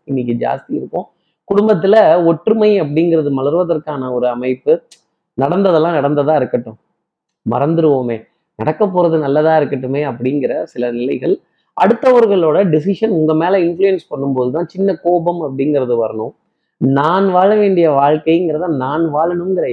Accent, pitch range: native, 145-185 Hz